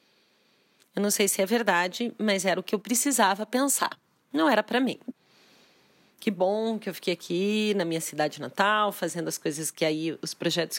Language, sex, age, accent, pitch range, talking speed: Portuguese, female, 40-59, Brazilian, 175-215 Hz, 190 wpm